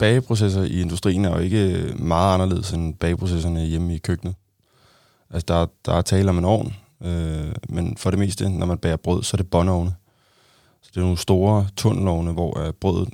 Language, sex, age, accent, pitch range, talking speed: Danish, male, 20-39, native, 85-110 Hz, 185 wpm